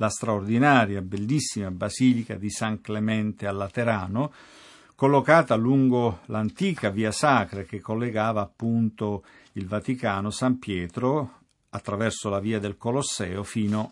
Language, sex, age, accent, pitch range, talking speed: Italian, male, 50-69, native, 105-135 Hz, 115 wpm